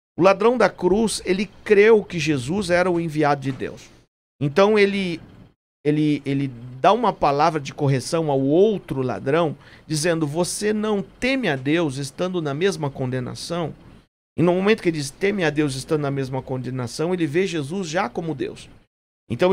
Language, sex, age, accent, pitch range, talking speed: Portuguese, male, 50-69, Brazilian, 150-205 Hz, 170 wpm